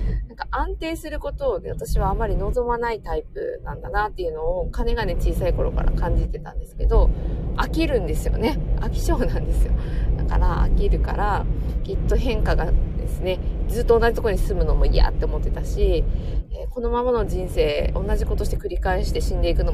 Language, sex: Japanese, female